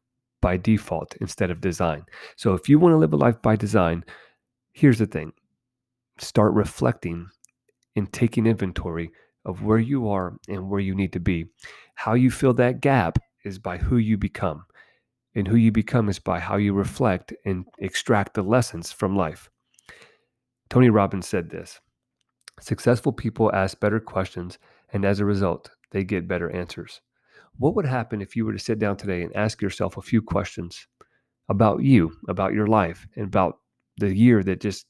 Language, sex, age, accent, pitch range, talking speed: English, male, 30-49, American, 95-125 Hz, 175 wpm